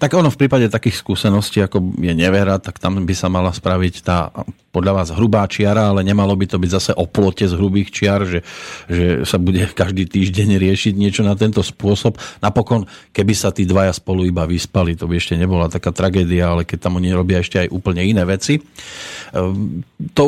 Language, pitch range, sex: Slovak, 95-120 Hz, male